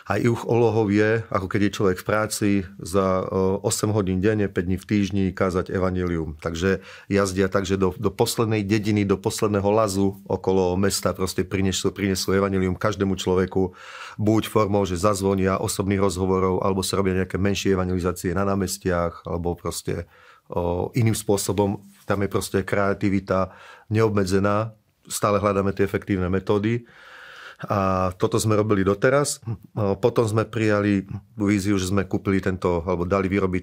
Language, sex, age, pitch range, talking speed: Slovak, male, 40-59, 95-105 Hz, 145 wpm